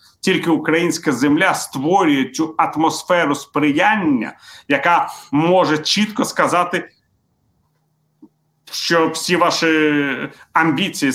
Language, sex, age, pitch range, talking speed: Ukrainian, male, 40-59, 145-215 Hz, 80 wpm